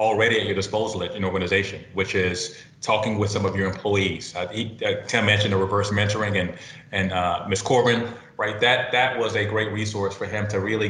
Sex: male